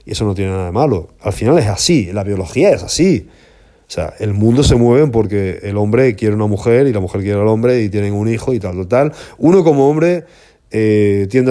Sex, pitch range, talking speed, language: male, 95-125 Hz, 240 wpm, Spanish